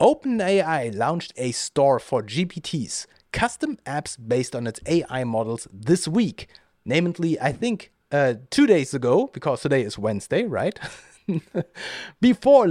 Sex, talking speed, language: male, 130 wpm, English